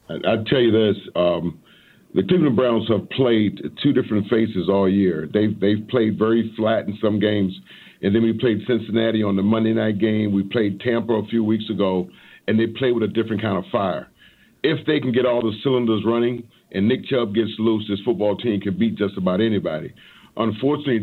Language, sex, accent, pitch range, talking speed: English, male, American, 105-130 Hz, 205 wpm